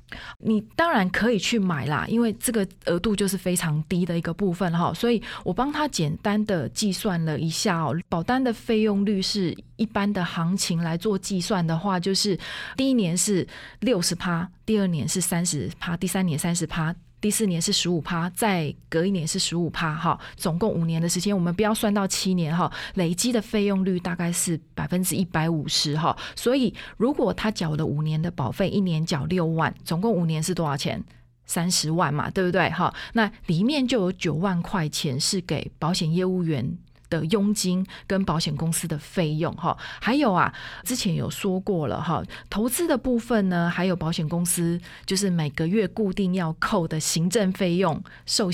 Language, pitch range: Chinese, 165-200 Hz